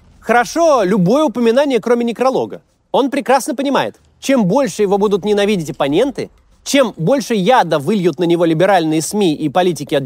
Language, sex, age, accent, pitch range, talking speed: Russian, male, 30-49, native, 185-260 Hz, 150 wpm